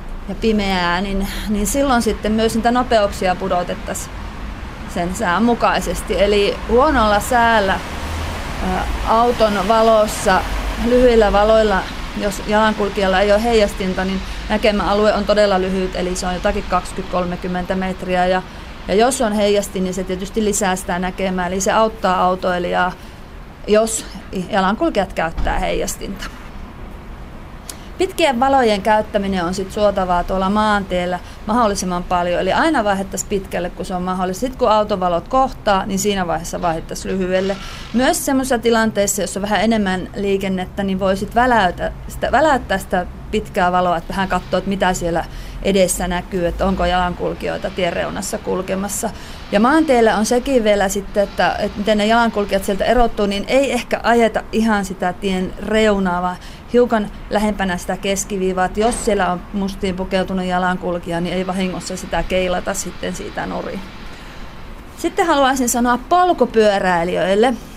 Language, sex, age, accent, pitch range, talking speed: Finnish, female, 30-49, native, 185-220 Hz, 140 wpm